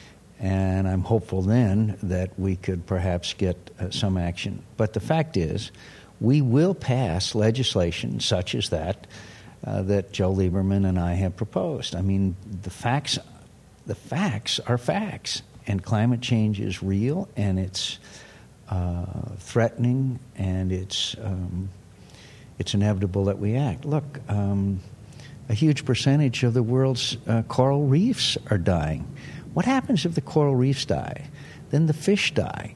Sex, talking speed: male, 145 wpm